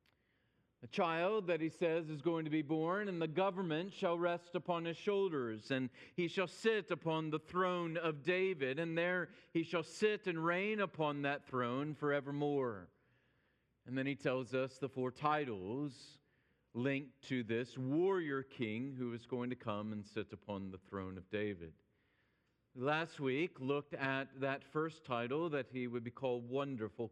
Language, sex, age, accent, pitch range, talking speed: English, male, 40-59, American, 120-165 Hz, 170 wpm